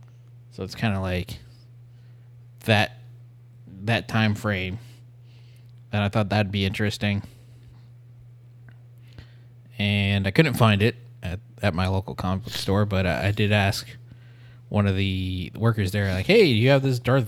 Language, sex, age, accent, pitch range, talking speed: English, male, 20-39, American, 105-120 Hz, 155 wpm